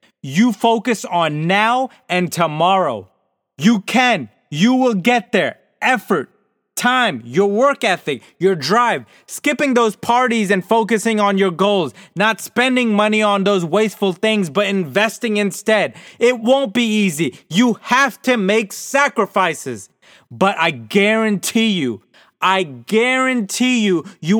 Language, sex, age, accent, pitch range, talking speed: English, male, 30-49, American, 195-245 Hz, 135 wpm